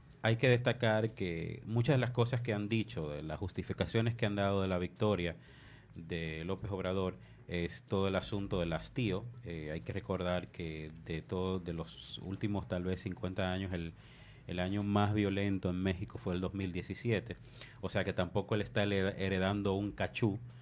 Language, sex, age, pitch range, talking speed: English, male, 30-49, 95-115 Hz, 180 wpm